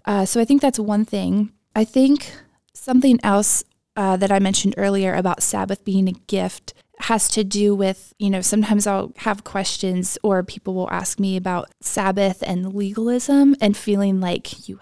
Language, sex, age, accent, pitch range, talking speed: English, female, 20-39, American, 190-215 Hz, 180 wpm